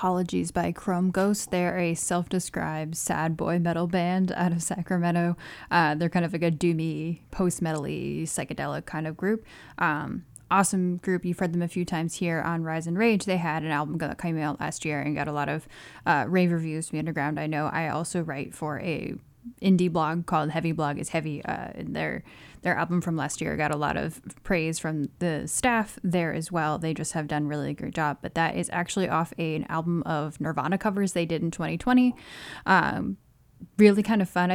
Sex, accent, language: female, American, English